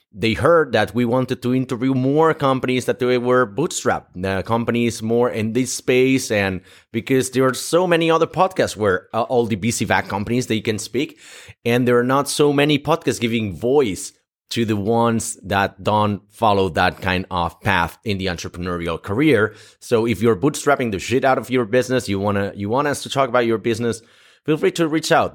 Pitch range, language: 100-135 Hz, English